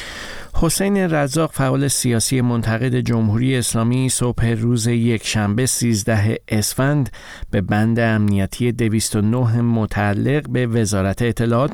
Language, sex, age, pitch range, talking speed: Persian, male, 50-69, 100-125 Hz, 105 wpm